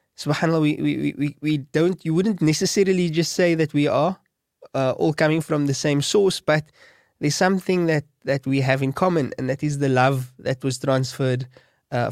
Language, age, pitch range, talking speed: English, 20-39, 135-160 Hz, 195 wpm